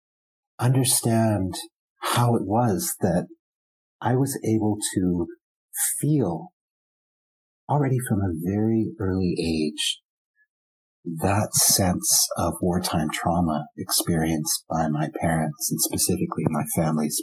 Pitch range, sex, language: 85-120 Hz, male, English